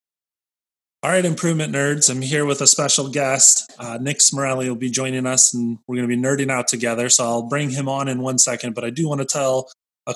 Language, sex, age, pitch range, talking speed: English, male, 20-39, 115-130 Hz, 235 wpm